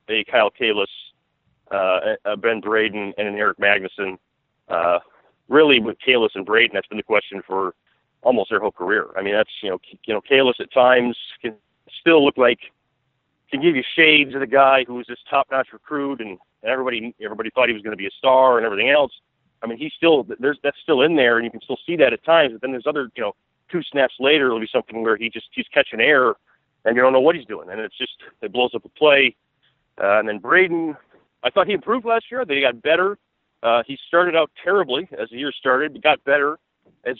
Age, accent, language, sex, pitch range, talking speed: 40-59, American, English, male, 120-165 Hz, 230 wpm